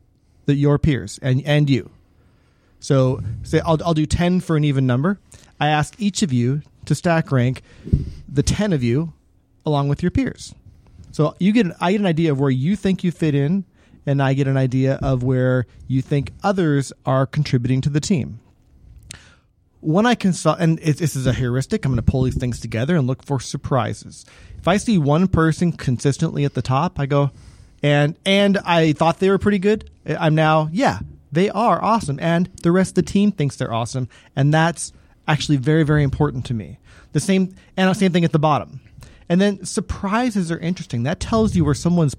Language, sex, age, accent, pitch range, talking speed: English, male, 30-49, American, 130-170 Hz, 200 wpm